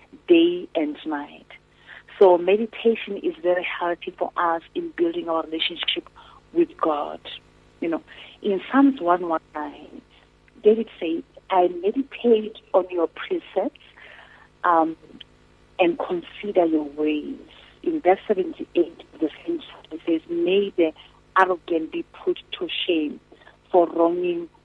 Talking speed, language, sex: 115 wpm, English, female